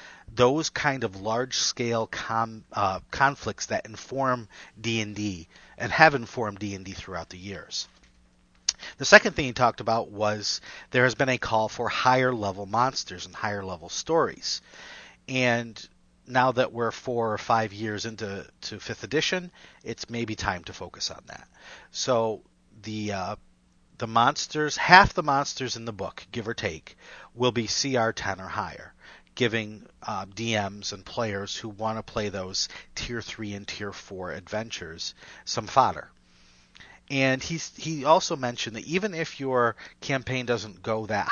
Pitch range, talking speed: 100-130 Hz, 150 wpm